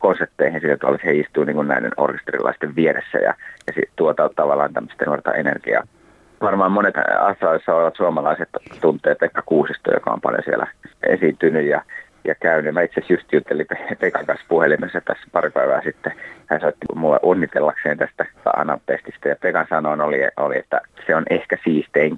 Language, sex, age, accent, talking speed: Finnish, male, 30-49, native, 155 wpm